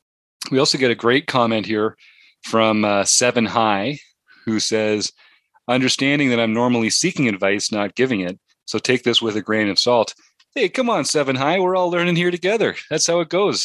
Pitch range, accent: 100-125 Hz, American